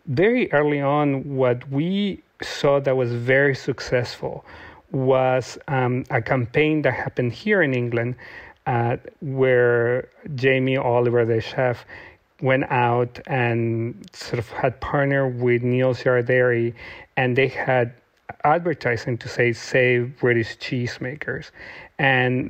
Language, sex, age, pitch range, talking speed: English, male, 40-59, 120-135 Hz, 120 wpm